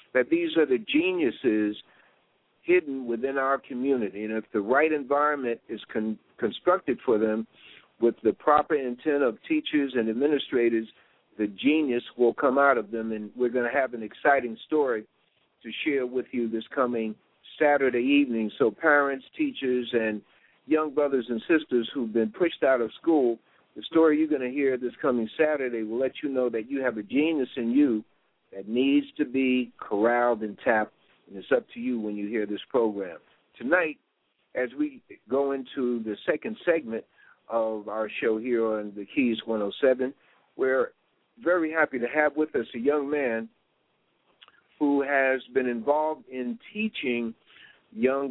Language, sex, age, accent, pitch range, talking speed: English, male, 60-79, American, 115-145 Hz, 165 wpm